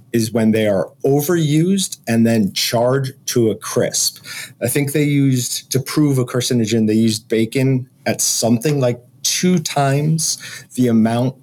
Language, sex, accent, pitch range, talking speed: English, male, American, 110-140 Hz, 150 wpm